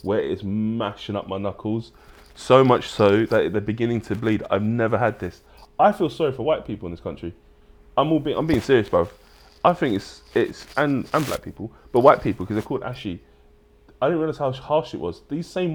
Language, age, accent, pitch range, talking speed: English, 20-39, British, 90-135 Hz, 220 wpm